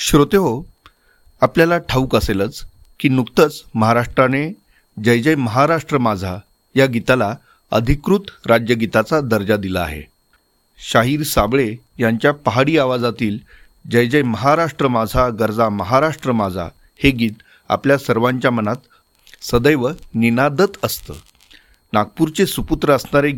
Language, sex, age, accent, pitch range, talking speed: Marathi, male, 40-59, native, 110-135 Hz, 110 wpm